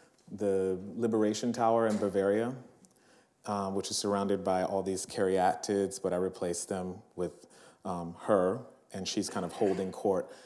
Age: 30-49